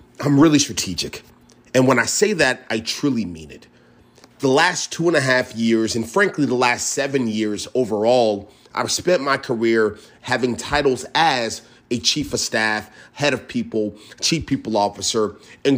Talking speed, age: 165 wpm, 30-49